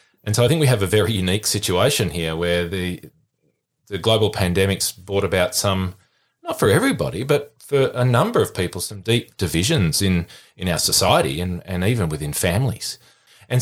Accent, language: Australian, English